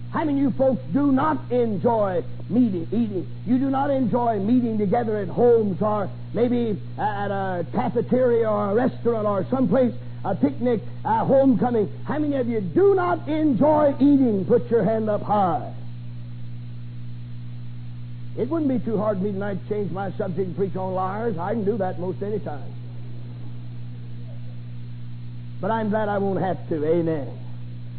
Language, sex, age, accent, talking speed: English, male, 50-69, American, 165 wpm